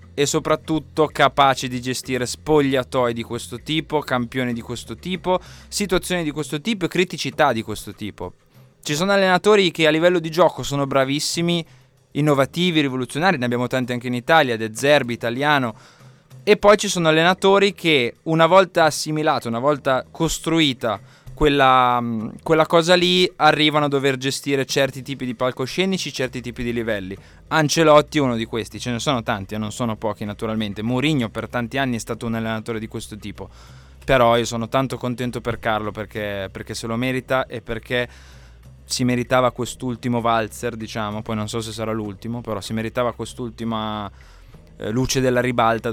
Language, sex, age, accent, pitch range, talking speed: Italian, male, 20-39, native, 115-150 Hz, 170 wpm